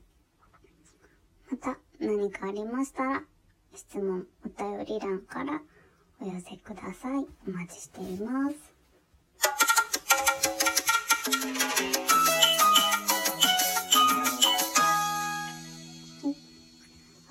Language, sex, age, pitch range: Japanese, male, 20-39, 185-280 Hz